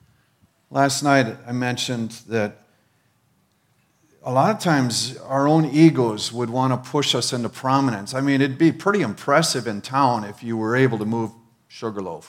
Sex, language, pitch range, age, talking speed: male, English, 115-140 Hz, 50-69, 165 wpm